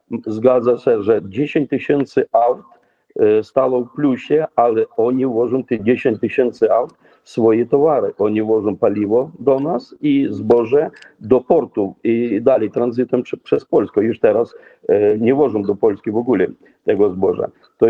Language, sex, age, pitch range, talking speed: Polish, male, 50-69, 120-155 Hz, 145 wpm